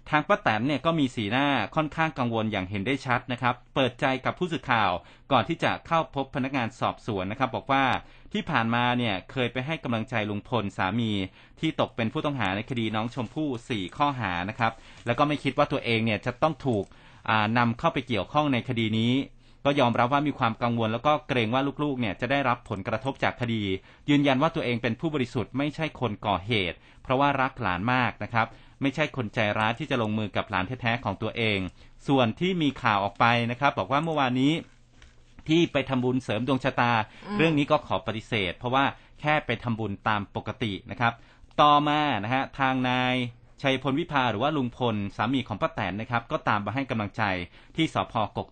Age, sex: 30-49, male